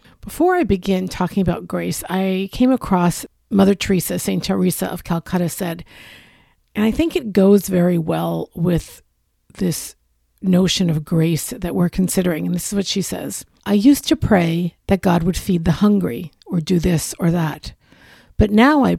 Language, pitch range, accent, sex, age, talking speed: English, 175-225 Hz, American, female, 50-69, 175 wpm